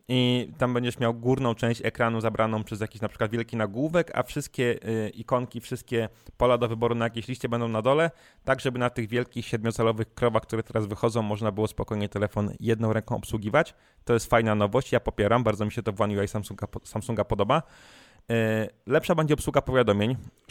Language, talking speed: Polish, 185 wpm